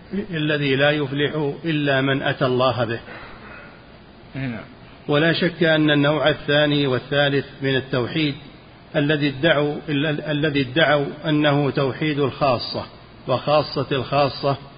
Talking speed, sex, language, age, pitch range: 95 wpm, male, Arabic, 50-69, 135-150 Hz